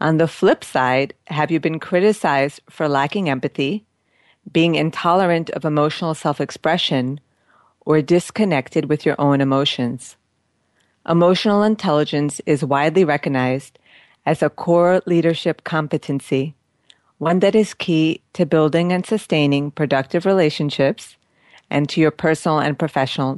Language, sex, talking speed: English, female, 125 wpm